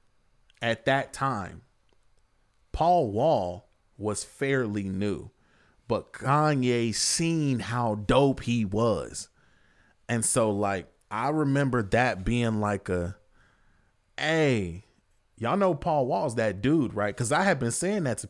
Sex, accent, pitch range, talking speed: male, American, 100-135 Hz, 130 wpm